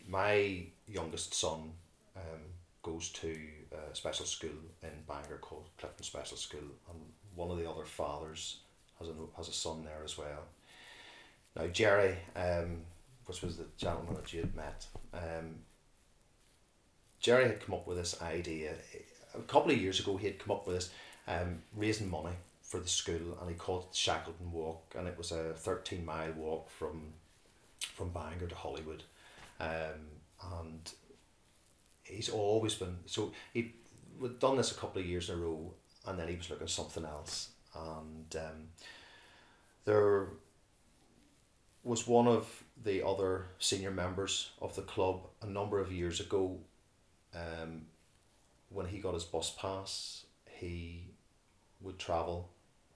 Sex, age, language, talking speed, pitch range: male, 30-49, English, 155 wpm, 80-95 Hz